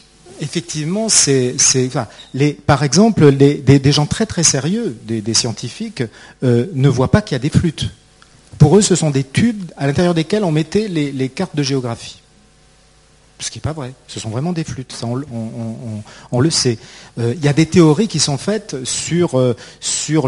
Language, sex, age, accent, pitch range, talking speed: French, male, 40-59, French, 130-175 Hz, 215 wpm